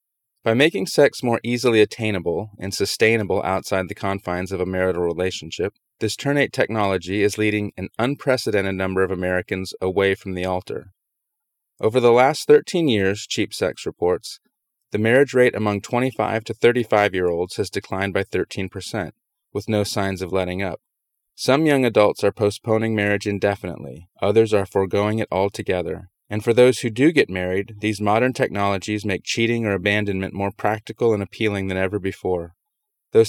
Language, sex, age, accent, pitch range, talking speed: English, male, 30-49, American, 95-115 Hz, 160 wpm